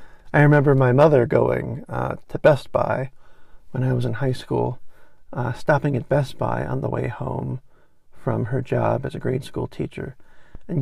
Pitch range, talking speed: 130-150 Hz, 185 wpm